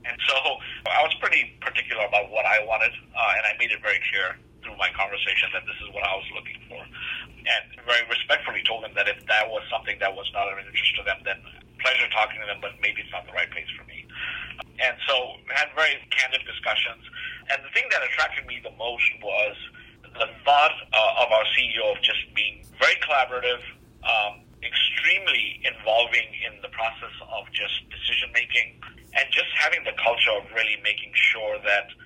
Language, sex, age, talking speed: English, male, 50-69, 195 wpm